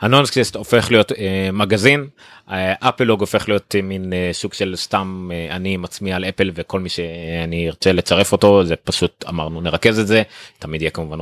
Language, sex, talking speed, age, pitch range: Hebrew, male, 175 wpm, 30-49, 90-125 Hz